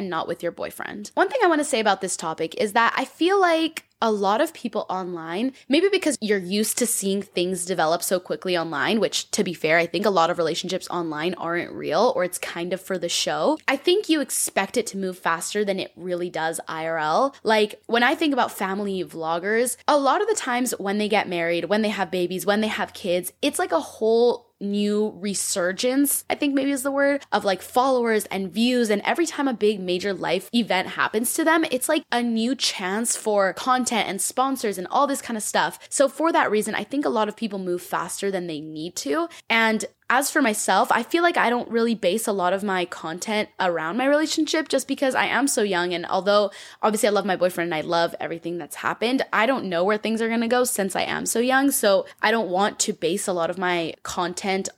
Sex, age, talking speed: female, 10-29, 235 wpm